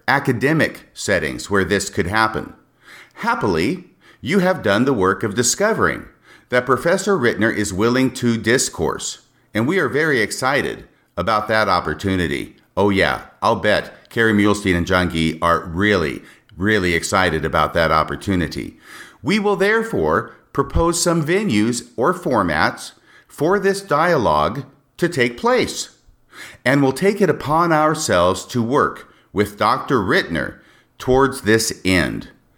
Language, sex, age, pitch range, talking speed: English, male, 50-69, 100-140 Hz, 135 wpm